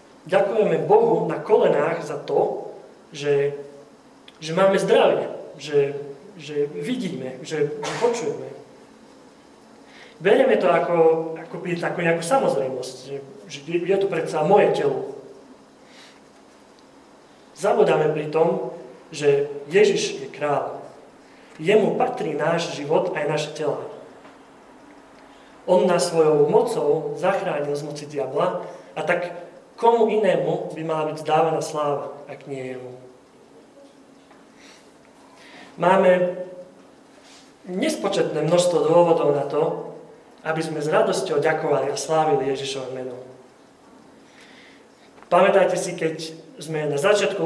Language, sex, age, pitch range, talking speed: Slovak, male, 30-49, 150-205 Hz, 105 wpm